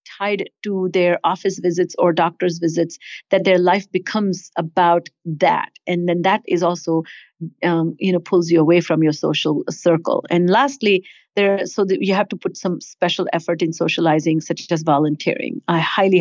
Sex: female